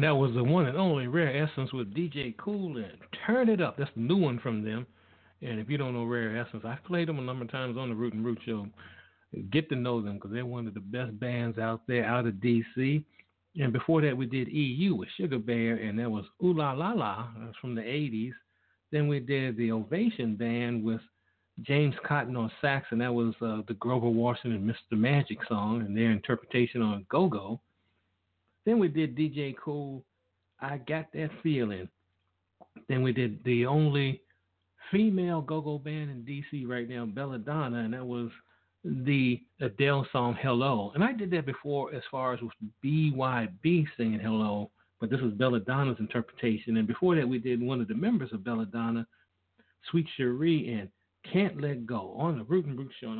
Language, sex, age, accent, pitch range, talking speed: English, male, 60-79, American, 115-145 Hz, 195 wpm